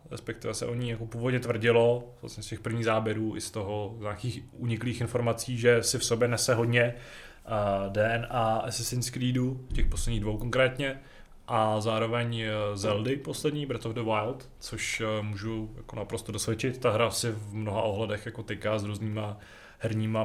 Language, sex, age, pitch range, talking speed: Czech, male, 20-39, 105-120 Hz, 165 wpm